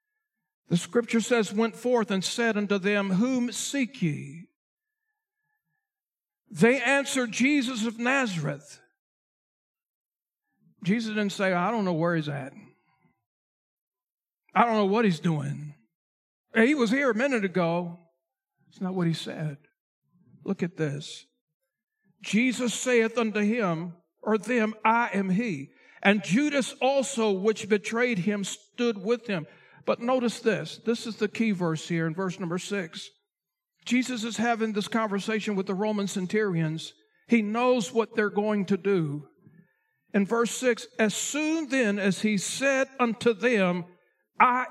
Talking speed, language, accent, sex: 140 wpm, English, American, male